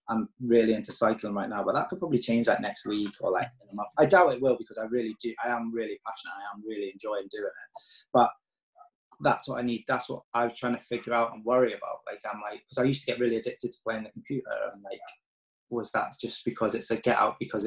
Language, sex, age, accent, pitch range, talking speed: English, male, 20-39, British, 110-125 Hz, 260 wpm